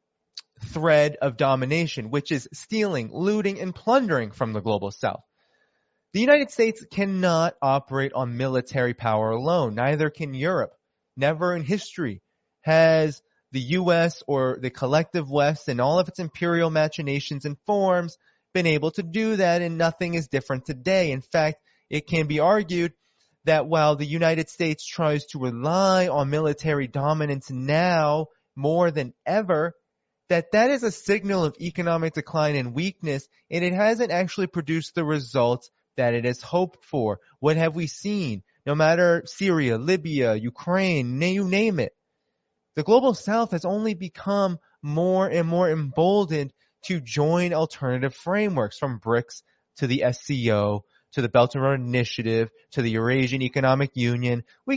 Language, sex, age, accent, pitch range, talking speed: English, male, 20-39, American, 135-180 Hz, 150 wpm